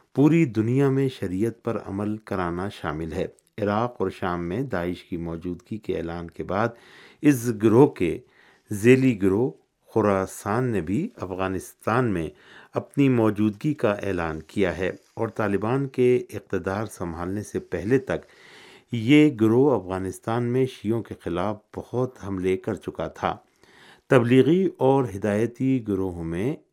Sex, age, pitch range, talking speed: male, 50-69, 95-125 Hz, 135 wpm